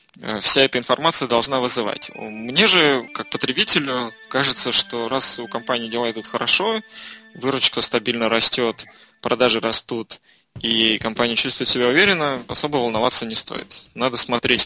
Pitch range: 115-130 Hz